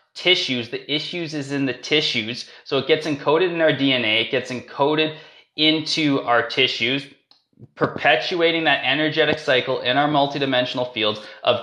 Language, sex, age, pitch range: English, male, 20-39, 125-165 Hz